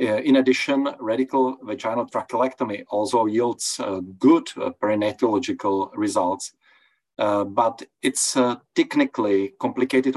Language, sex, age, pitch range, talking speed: English, male, 40-59, 110-135 Hz, 110 wpm